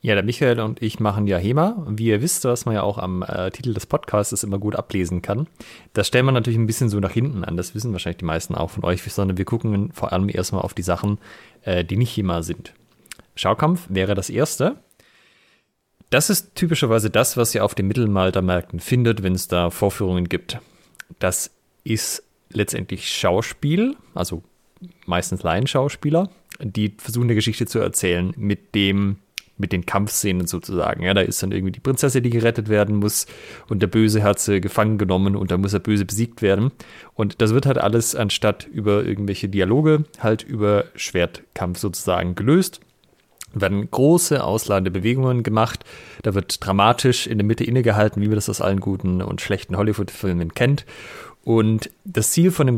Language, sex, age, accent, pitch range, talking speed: German, male, 30-49, German, 95-120 Hz, 185 wpm